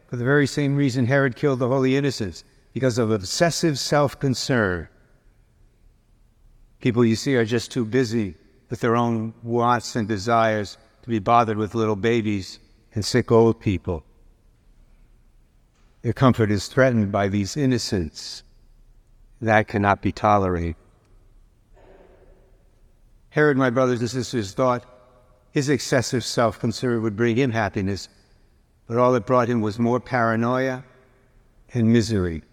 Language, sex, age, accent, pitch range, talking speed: English, male, 60-79, American, 110-130 Hz, 130 wpm